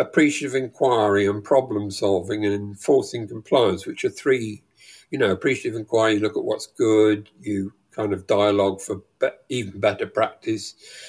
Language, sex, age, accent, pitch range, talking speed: English, male, 50-69, British, 110-175 Hz, 155 wpm